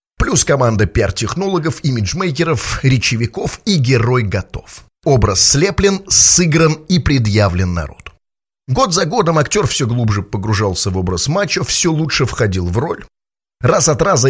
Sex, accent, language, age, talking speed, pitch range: male, native, Russian, 30-49, 130 wpm, 105-150 Hz